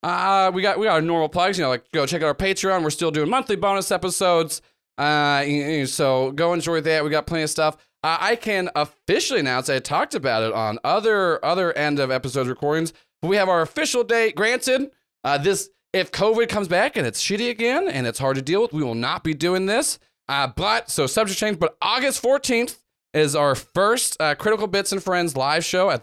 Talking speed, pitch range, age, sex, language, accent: 220 wpm, 150-195 Hz, 30-49, male, English, American